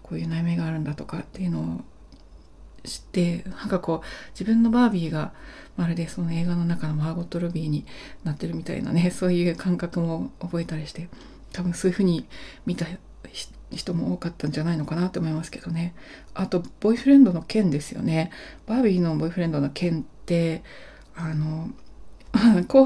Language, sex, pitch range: Japanese, female, 165-210 Hz